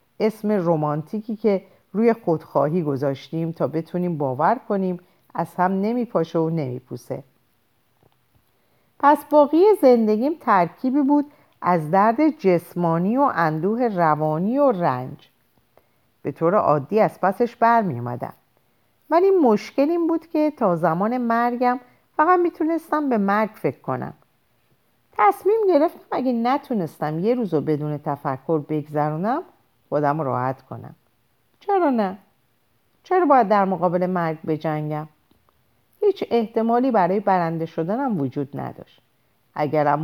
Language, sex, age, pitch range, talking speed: Persian, female, 50-69, 155-245 Hz, 115 wpm